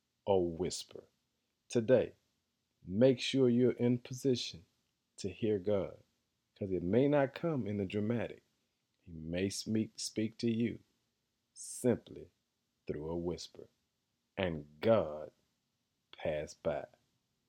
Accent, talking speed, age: American, 110 wpm, 40-59